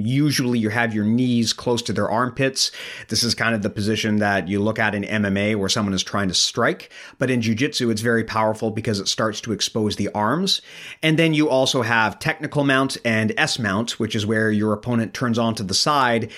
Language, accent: English, American